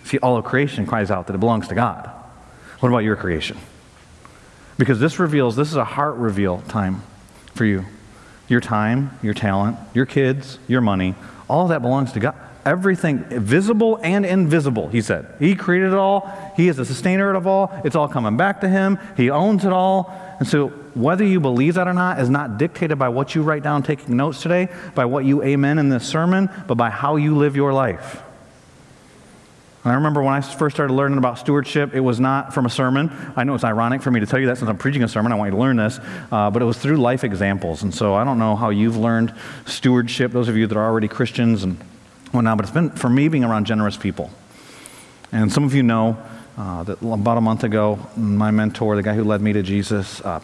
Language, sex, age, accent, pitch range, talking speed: English, male, 40-59, American, 105-145 Hz, 225 wpm